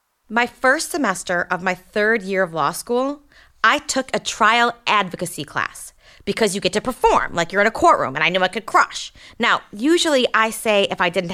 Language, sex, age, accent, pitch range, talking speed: English, female, 40-59, American, 190-295 Hz, 205 wpm